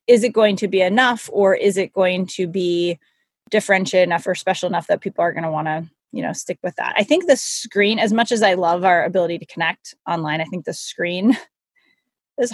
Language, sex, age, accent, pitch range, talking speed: English, female, 20-39, American, 175-210 Hz, 230 wpm